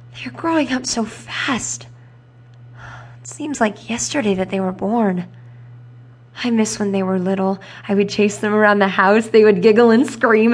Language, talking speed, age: English, 175 wpm, 20-39